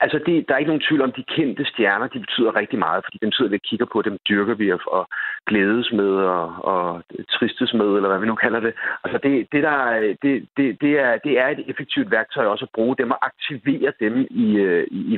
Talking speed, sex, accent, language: 245 wpm, male, native, Danish